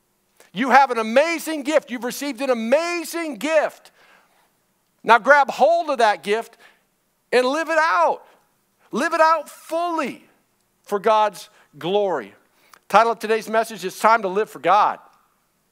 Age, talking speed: 50-69, 145 wpm